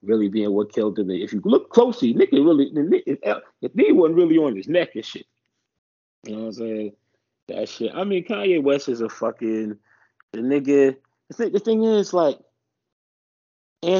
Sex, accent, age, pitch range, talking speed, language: male, American, 30-49, 115-145 Hz, 180 wpm, English